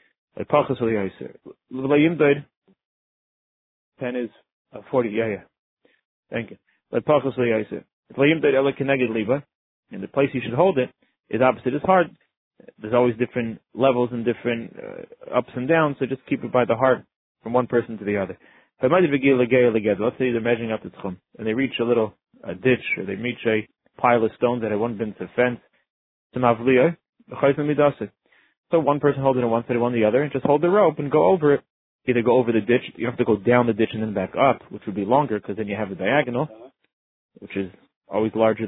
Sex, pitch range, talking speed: male, 110-135 Hz, 190 wpm